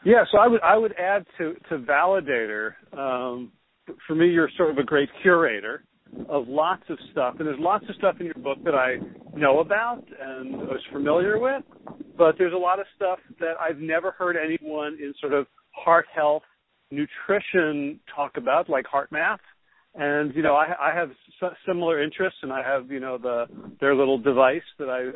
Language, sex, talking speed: English, male, 195 wpm